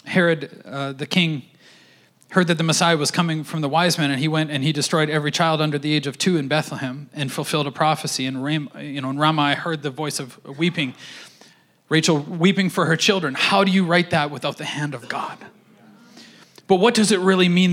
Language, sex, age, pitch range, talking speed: English, male, 30-49, 160-215 Hz, 215 wpm